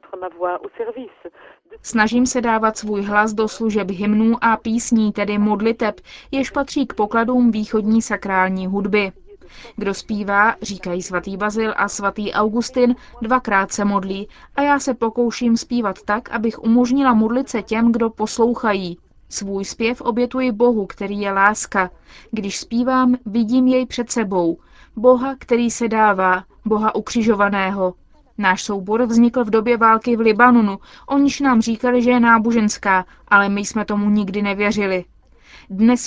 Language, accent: Czech, native